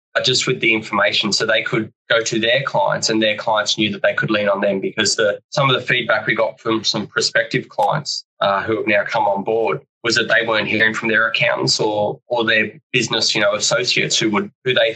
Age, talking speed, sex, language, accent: 20-39, 240 wpm, male, English, Australian